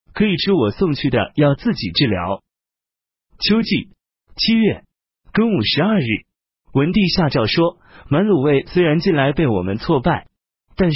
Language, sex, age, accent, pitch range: Chinese, male, 30-49, native, 115-190 Hz